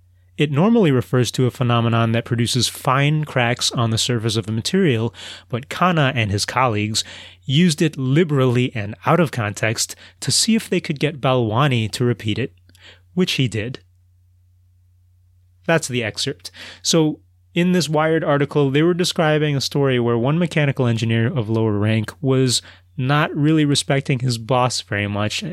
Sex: male